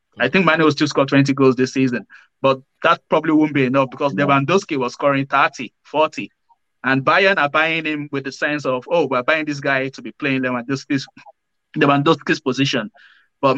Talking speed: 190 wpm